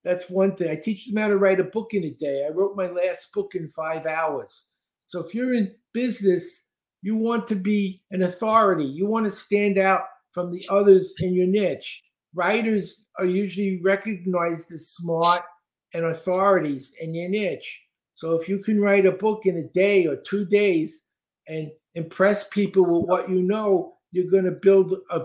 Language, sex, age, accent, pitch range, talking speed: English, male, 50-69, American, 165-200 Hz, 190 wpm